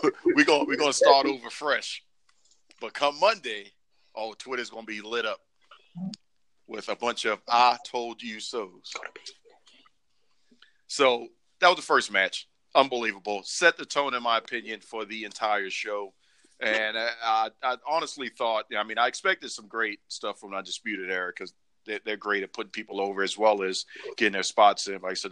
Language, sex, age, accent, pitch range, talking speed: English, male, 40-59, American, 105-130 Hz, 180 wpm